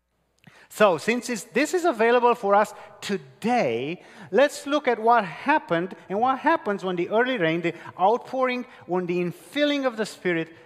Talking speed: 160 wpm